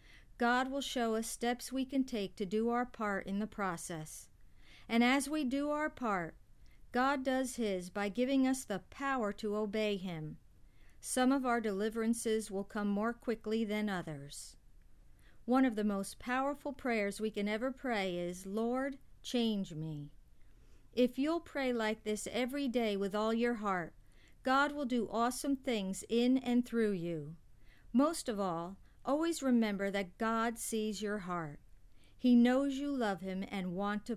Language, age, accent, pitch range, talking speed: English, 50-69, American, 195-250 Hz, 165 wpm